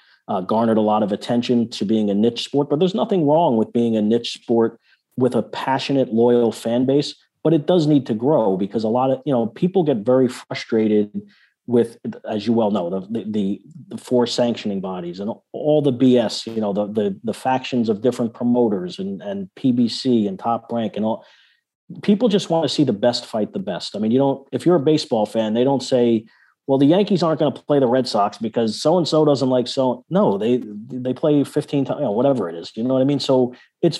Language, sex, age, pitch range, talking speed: English, male, 40-59, 115-150 Hz, 230 wpm